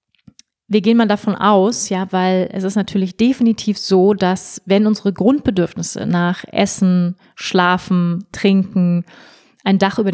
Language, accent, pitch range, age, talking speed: German, German, 185-210 Hz, 30-49, 135 wpm